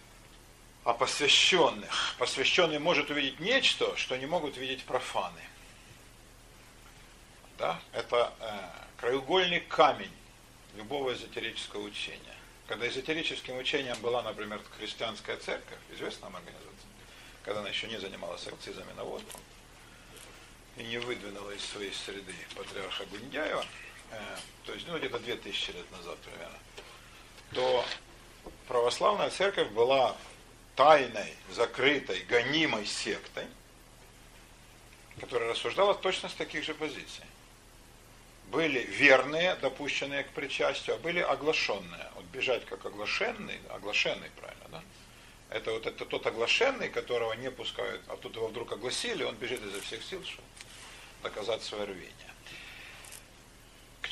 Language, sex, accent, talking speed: Russian, male, native, 115 wpm